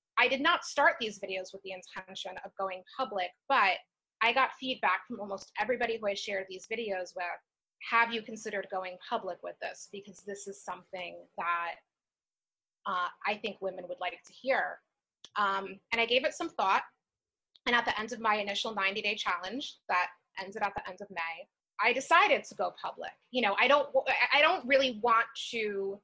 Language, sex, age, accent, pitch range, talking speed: English, female, 20-39, American, 190-240 Hz, 190 wpm